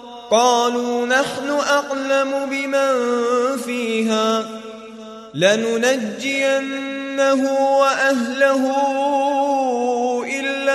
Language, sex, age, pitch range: Arabic, male, 30-49, 225-250 Hz